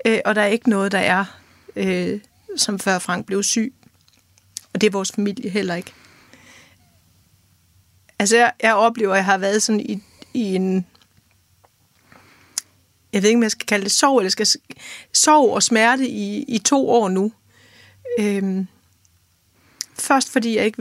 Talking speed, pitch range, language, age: 160 wpm, 195-240 Hz, Danish, 30-49